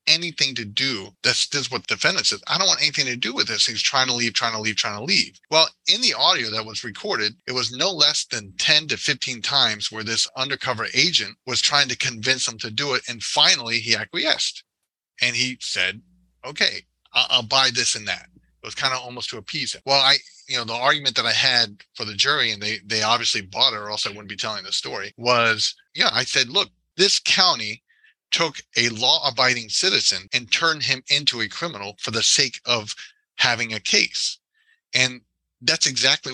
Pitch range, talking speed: 110-135 Hz, 215 wpm